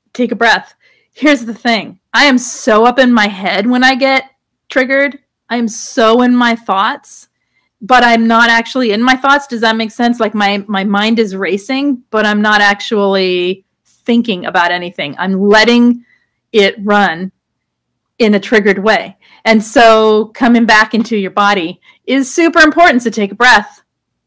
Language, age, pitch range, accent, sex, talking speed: English, 40-59, 195-240 Hz, American, female, 170 wpm